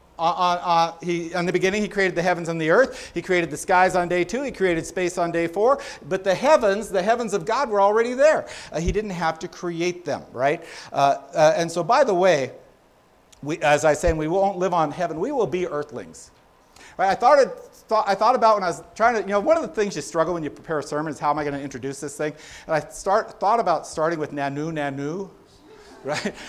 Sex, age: male, 50-69